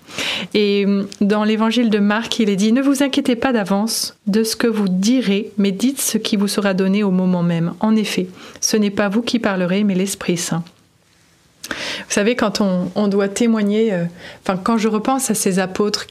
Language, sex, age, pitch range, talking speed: French, female, 30-49, 190-225 Hz, 200 wpm